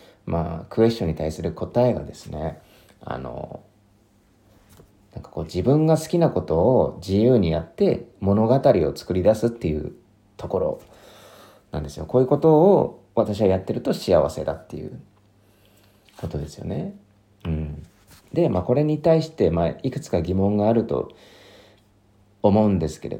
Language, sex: Japanese, male